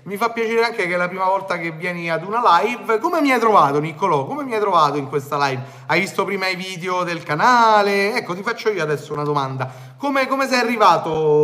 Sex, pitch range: male, 145-230 Hz